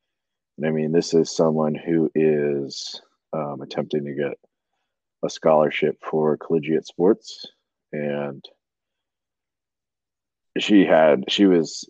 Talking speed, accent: 105 wpm, American